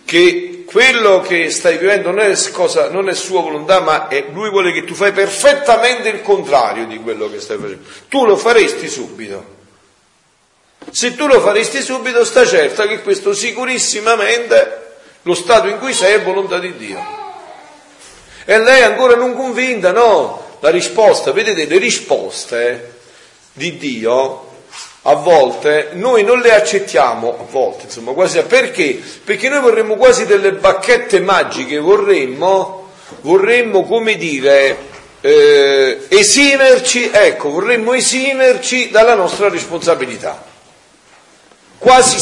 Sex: male